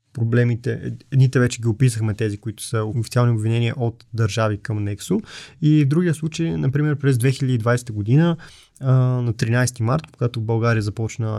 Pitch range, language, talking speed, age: 115-135 Hz, Bulgarian, 150 wpm, 20-39